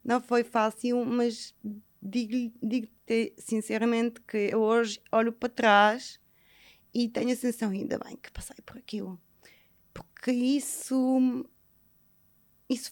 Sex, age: female, 20-39